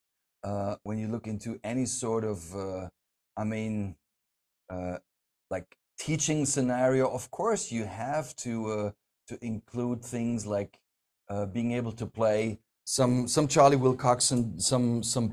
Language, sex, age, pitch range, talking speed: English, male, 40-59, 105-130 Hz, 145 wpm